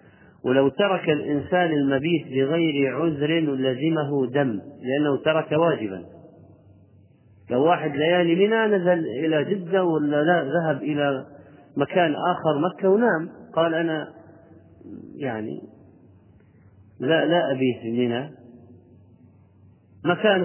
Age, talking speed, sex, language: 40-59, 95 wpm, male, Arabic